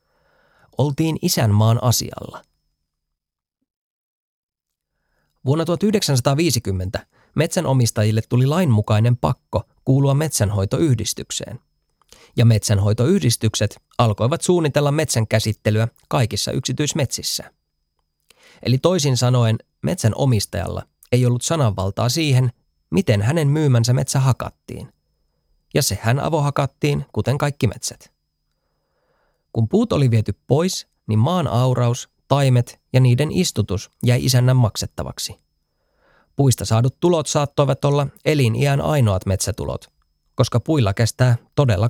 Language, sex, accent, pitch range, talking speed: Finnish, male, native, 105-140 Hz, 95 wpm